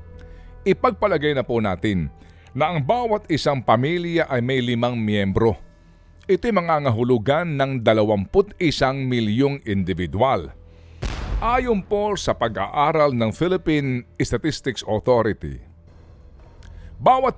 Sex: male